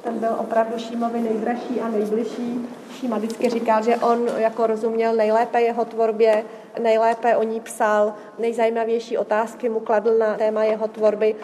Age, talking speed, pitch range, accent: 30-49, 150 wpm, 215-230 Hz, native